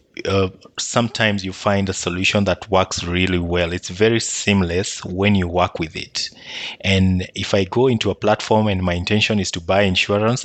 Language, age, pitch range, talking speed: English, 30-49, 95-115 Hz, 185 wpm